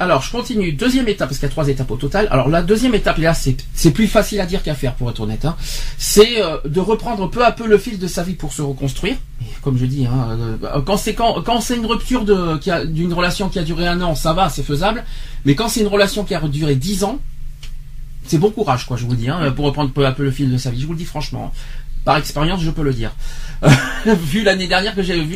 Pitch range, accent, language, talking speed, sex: 140-205 Hz, French, French, 275 wpm, male